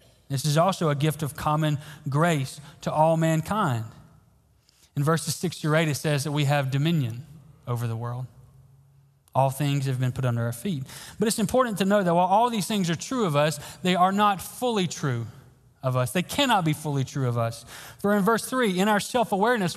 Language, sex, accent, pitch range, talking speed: English, male, American, 135-180 Hz, 205 wpm